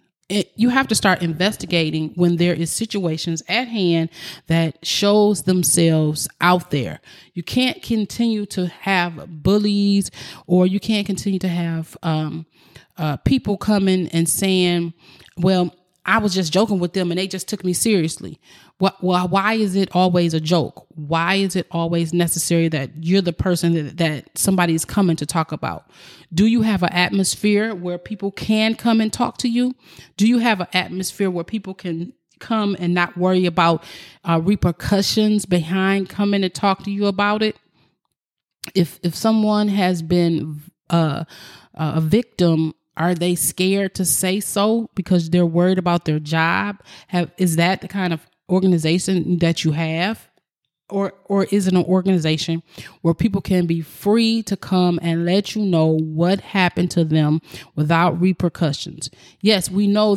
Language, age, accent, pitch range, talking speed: English, 30-49, American, 165-195 Hz, 165 wpm